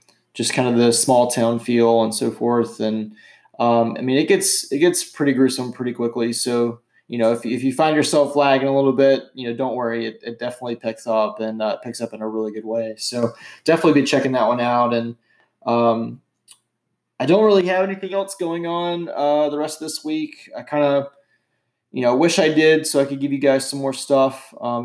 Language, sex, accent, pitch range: English, male, American, 120-145 Hz